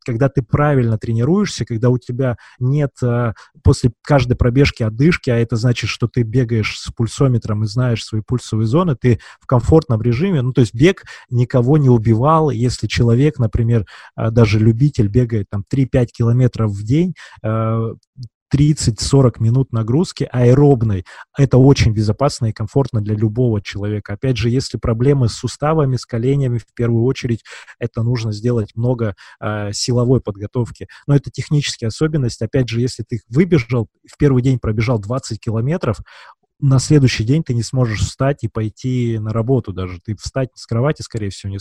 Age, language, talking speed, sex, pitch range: 20-39, Russian, 160 wpm, male, 110-135 Hz